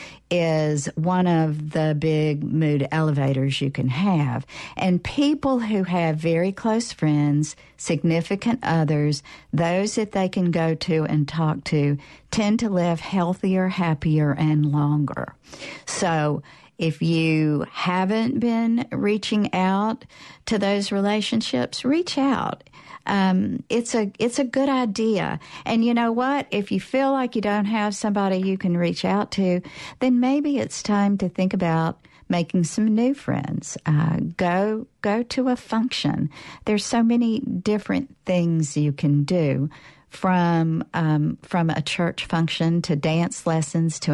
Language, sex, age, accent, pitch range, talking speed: English, female, 50-69, American, 155-215 Hz, 145 wpm